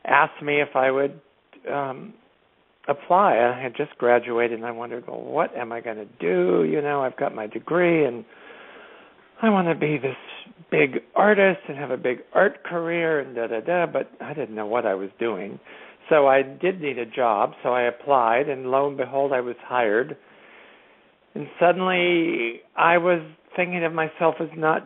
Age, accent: 60-79, American